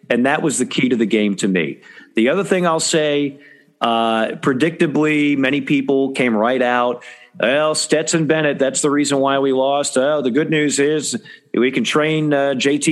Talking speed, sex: 190 wpm, male